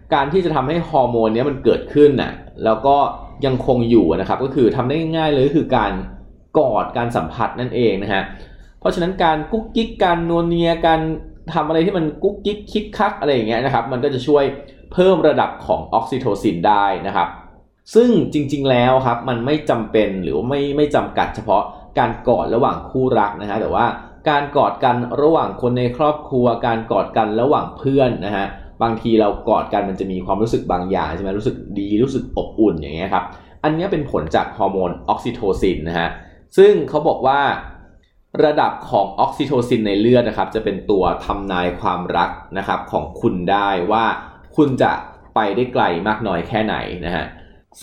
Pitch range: 100-150 Hz